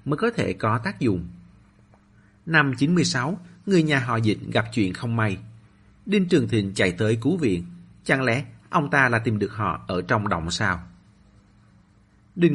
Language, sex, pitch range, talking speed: Vietnamese, male, 100-140 Hz, 170 wpm